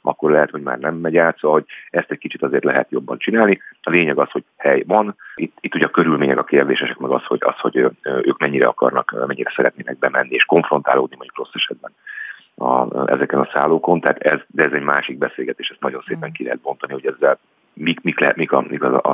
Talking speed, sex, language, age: 215 wpm, male, Hungarian, 40-59